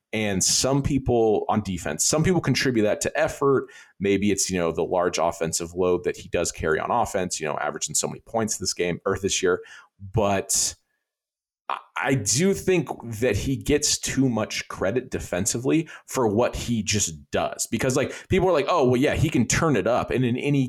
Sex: male